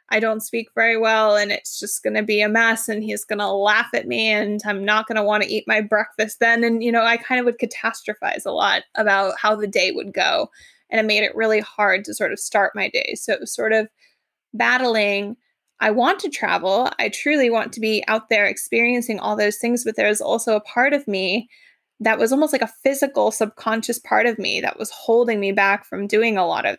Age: 20-39